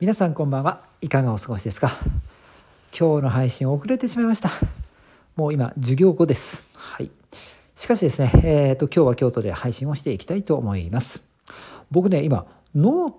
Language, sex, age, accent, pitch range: Japanese, male, 50-69, native, 110-170 Hz